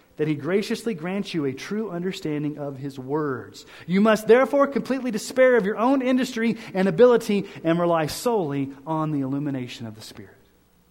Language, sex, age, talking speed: English, male, 30-49, 170 wpm